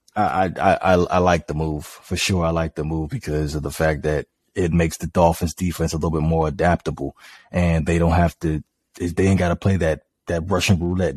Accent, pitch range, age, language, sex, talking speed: American, 85-100 Hz, 20-39, English, male, 225 wpm